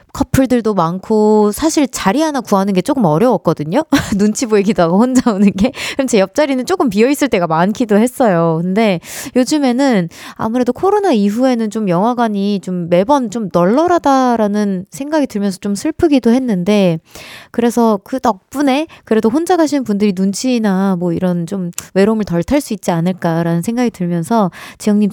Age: 20-39